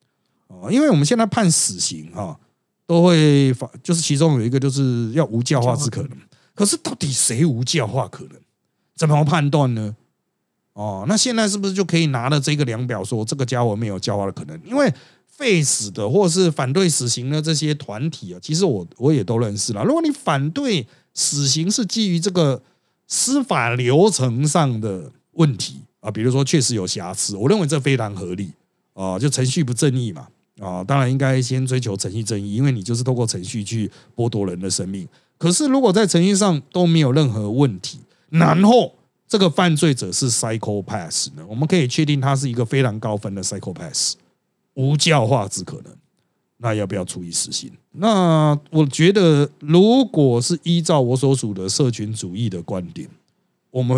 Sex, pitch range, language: male, 115-165 Hz, Chinese